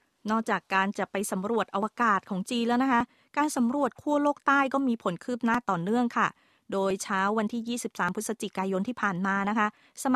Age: 20-39